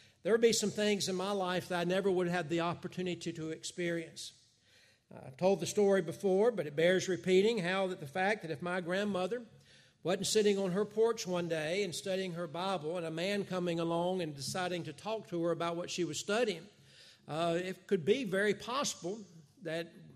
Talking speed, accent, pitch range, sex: 205 wpm, American, 165-200 Hz, male